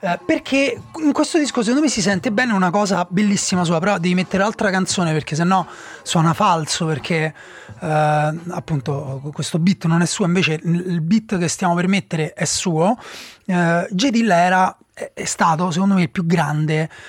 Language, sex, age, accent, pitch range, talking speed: Italian, male, 30-49, native, 160-205 Hz, 175 wpm